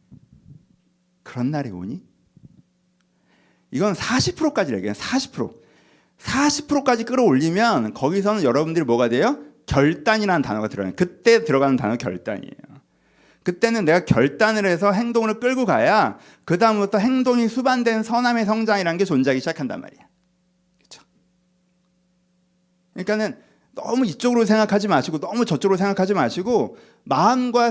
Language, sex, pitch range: Korean, male, 180-240 Hz